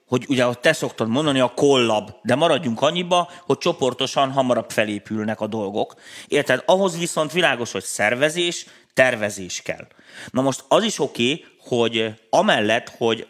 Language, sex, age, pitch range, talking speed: Hungarian, male, 30-49, 110-140 Hz, 145 wpm